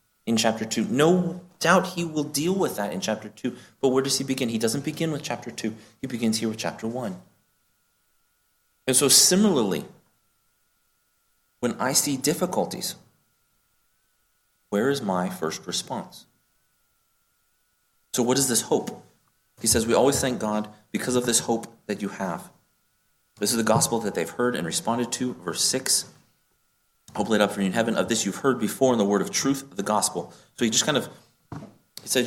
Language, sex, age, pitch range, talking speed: English, male, 30-49, 110-140 Hz, 180 wpm